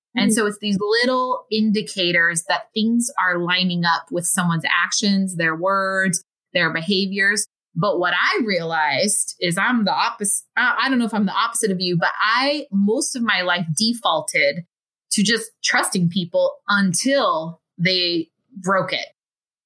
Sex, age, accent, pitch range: female, 20-39, American, 180-235 Hz